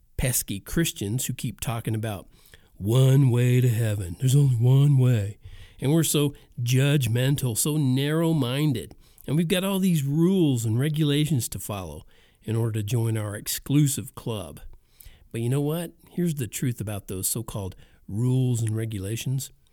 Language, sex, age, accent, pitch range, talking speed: English, male, 50-69, American, 110-150 Hz, 150 wpm